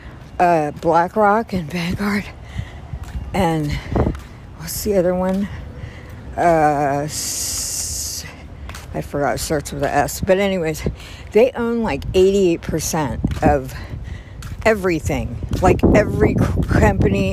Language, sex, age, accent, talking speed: English, female, 60-79, American, 95 wpm